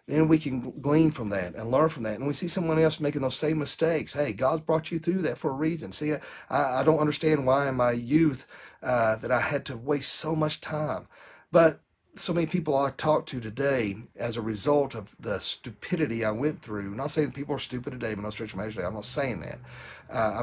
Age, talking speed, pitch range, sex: 40-59, 235 wpm, 110-150 Hz, male